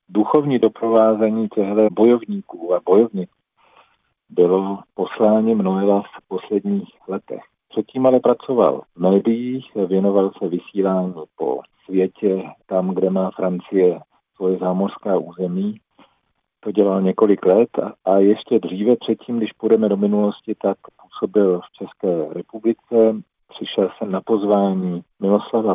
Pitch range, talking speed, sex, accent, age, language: 95-110 Hz, 120 wpm, male, native, 40-59, Czech